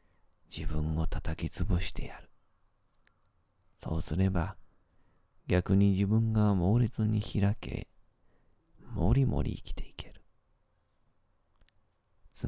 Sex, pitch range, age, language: male, 85-105 Hz, 40-59, Japanese